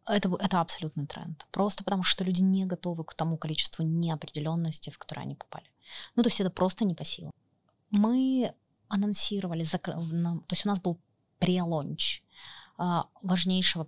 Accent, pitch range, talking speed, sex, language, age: native, 165-190 Hz, 150 wpm, female, Ukrainian, 20-39